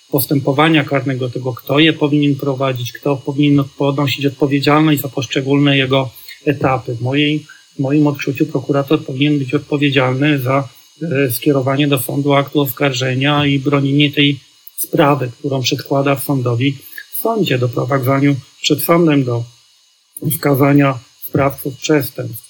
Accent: native